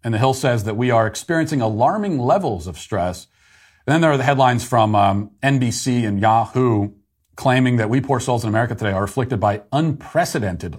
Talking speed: 195 wpm